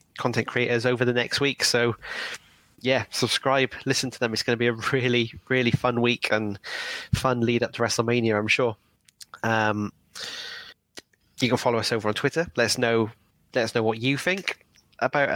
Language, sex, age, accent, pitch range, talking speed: English, male, 20-39, British, 110-130 Hz, 185 wpm